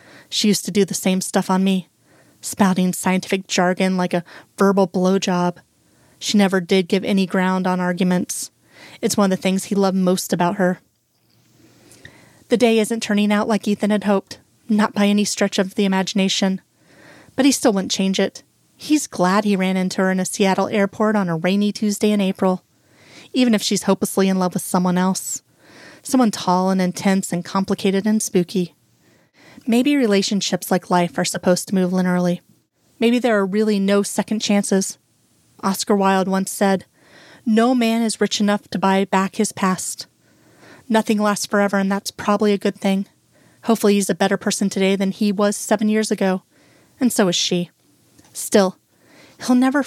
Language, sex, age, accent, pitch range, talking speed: English, female, 30-49, American, 185-215 Hz, 175 wpm